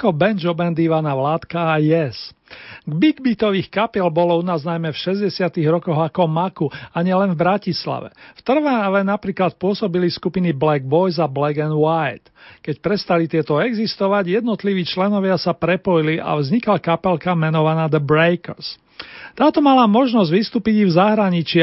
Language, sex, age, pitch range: Slovak, male, 40-59, 160-195 Hz